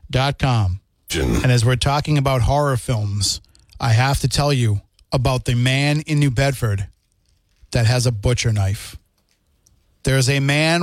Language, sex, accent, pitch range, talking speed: English, male, American, 110-160 Hz, 145 wpm